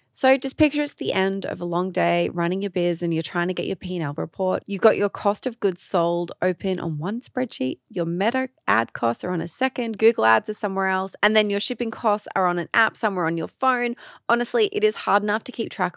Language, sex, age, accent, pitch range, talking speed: English, female, 30-49, Australian, 170-220 Hz, 250 wpm